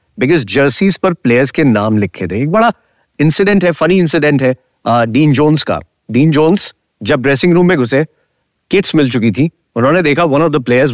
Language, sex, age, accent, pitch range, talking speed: English, male, 40-59, Indian, 115-155 Hz, 185 wpm